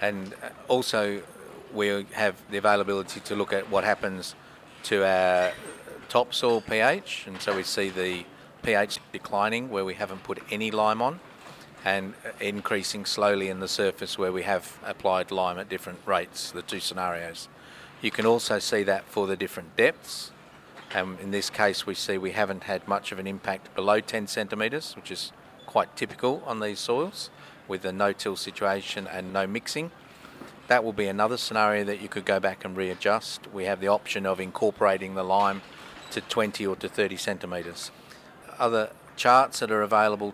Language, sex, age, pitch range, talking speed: English, male, 40-59, 95-105 Hz, 175 wpm